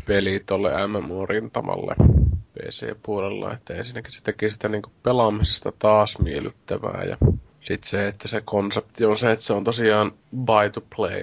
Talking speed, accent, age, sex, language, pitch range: 150 wpm, native, 20-39, male, Finnish, 100-110 Hz